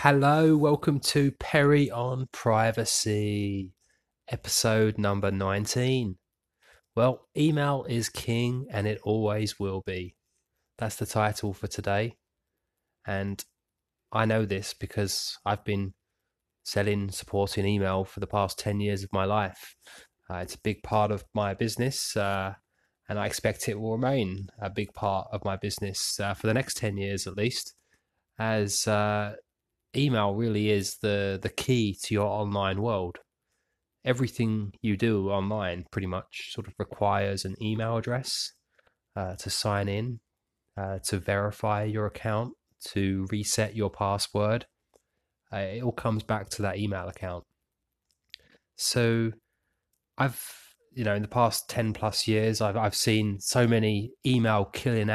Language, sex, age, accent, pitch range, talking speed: English, male, 20-39, British, 100-115 Hz, 145 wpm